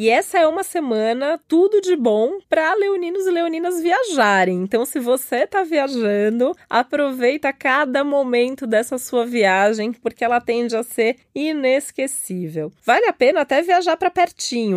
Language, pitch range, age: Portuguese, 220-285 Hz, 20-39